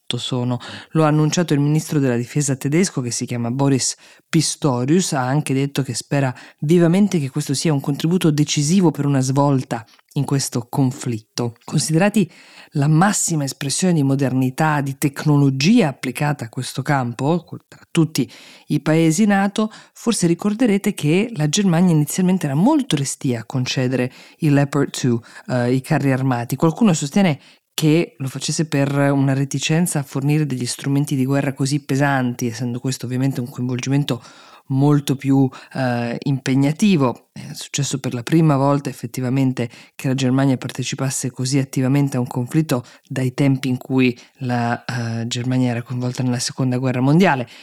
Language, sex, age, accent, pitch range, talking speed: Italian, female, 20-39, native, 130-155 Hz, 155 wpm